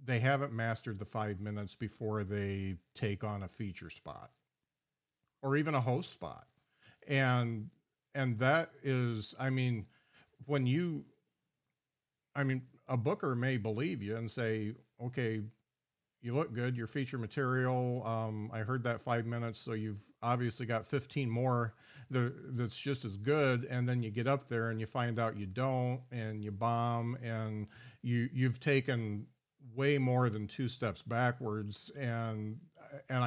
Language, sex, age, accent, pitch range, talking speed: English, male, 50-69, American, 110-135 Hz, 155 wpm